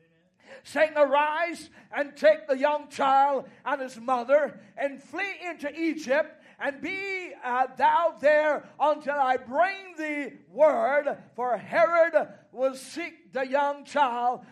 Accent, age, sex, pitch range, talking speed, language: American, 40-59, male, 270-350 Hz, 130 wpm, English